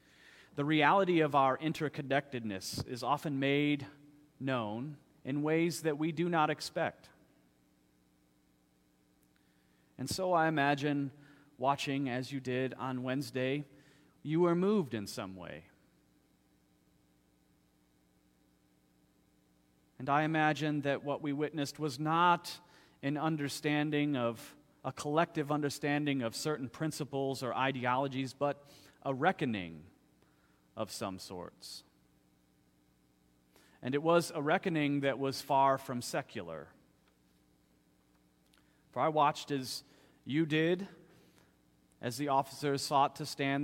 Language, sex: English, male